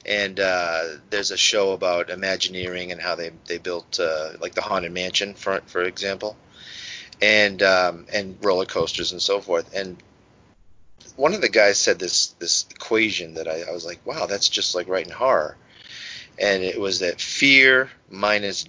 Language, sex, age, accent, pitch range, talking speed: English, male, 30-49, American, 90-115 Hz, 175 wpm